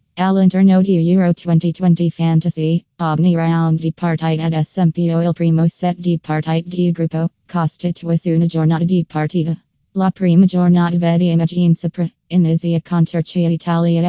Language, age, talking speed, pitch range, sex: Italian, 20-39, 145 wpm, 165-175 Hz, female